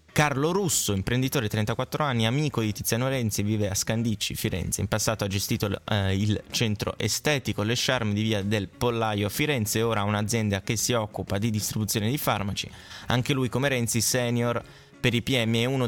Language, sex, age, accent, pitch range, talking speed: Italian, male, 20-39, native, 105-130 Hz, 180 wpm